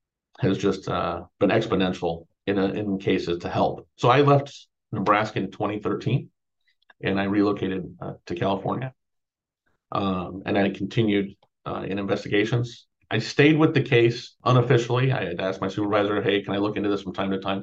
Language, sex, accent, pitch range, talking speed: English, male, American, 95-115 Hz, 175 wpm